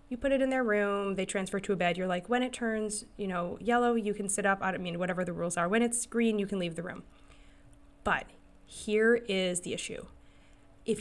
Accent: American